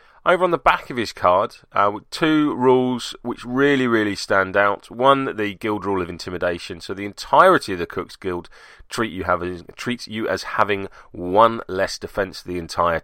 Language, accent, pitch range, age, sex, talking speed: English, British, 95-125 Hz, 30-49, male, 170 wpm